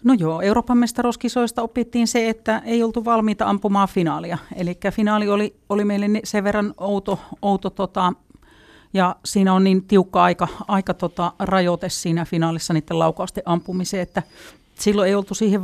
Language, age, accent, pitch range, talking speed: Finnish, 40-59, native, 175-210 Hz, 155 wpm